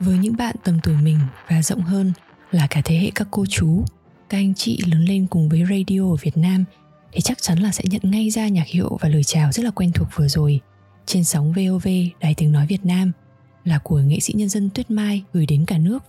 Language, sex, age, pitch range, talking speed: Vietnamese, female, 20-39, 155-190 Hz, 245 wpm